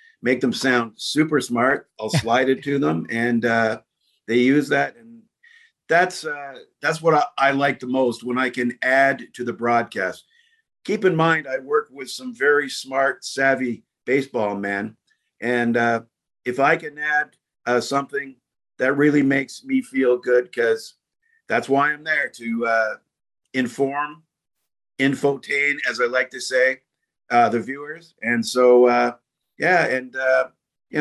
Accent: American